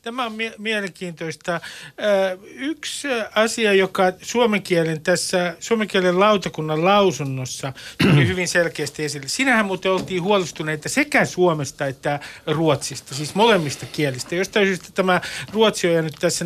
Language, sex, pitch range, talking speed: Finnish, male, 150-195 Hz, 140 wpm